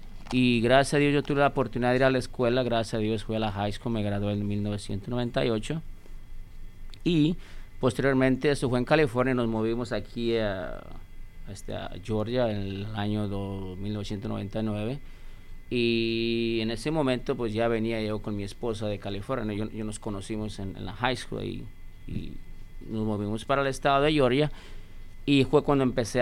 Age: 30-49